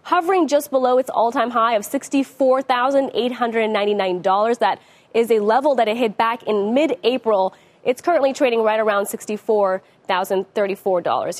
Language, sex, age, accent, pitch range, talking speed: English, female, 20-39, American, 195-260 Hz, 125 wpm